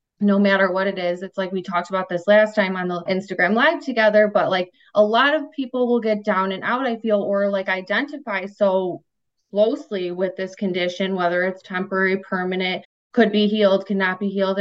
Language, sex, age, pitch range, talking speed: English, female, 20-39, 180-210 Hz, 200 wpm